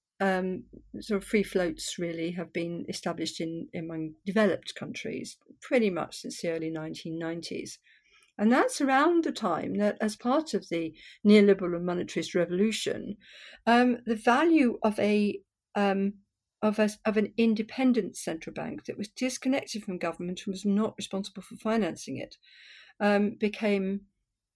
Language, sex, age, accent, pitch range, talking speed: English, female, 50-69, British, 185-215 Hz, 150 wpm